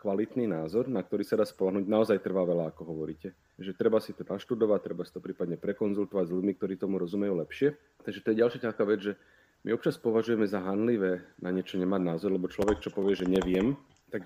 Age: 30-49